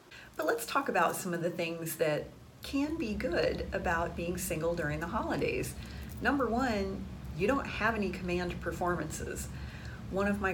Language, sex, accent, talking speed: English, female, American, 165 wpm